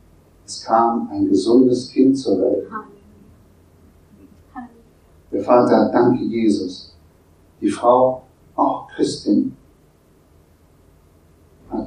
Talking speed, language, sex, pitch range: 80 wpm, German, male, 80-120 Hz